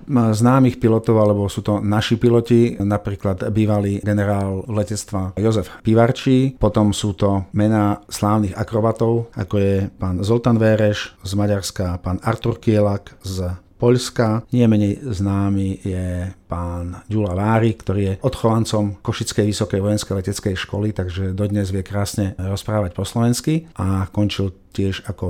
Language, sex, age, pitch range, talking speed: Slovak, male, 50-69, 95-115 Hz, 135 wpm